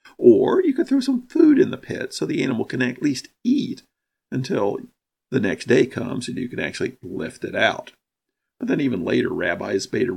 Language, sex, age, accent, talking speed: English, male, 50-69, American, 205 wpm